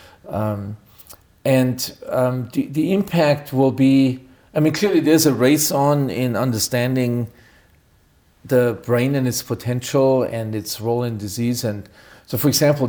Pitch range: 110-130 Hz